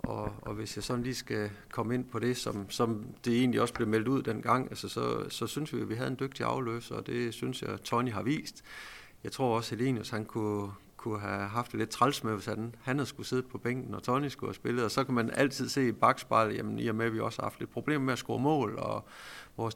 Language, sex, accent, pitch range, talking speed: Danish, male, native, 110-130 Hz, 270 wpm